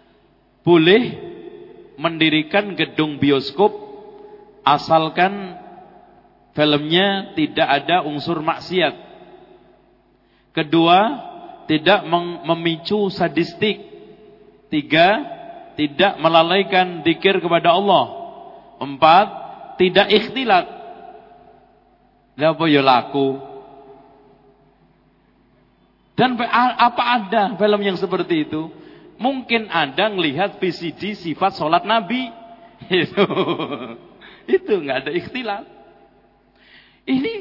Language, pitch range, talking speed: Indonesian, 160-240 Hz, 65 wpm